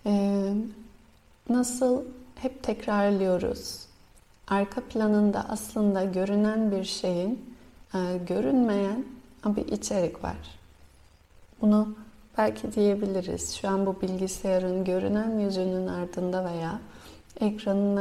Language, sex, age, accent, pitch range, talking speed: Turkish, female, 30-49, native, 180-210 Hz, 85 wpm